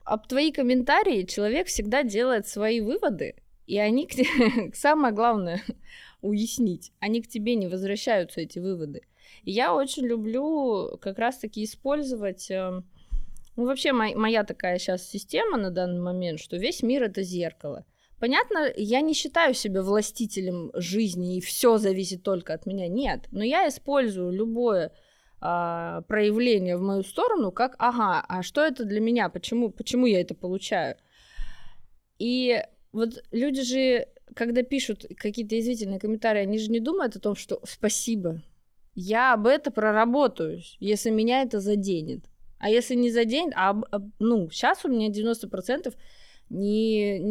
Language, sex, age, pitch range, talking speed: Russian, female, 20-39, 195-250 Hz, 150 wpm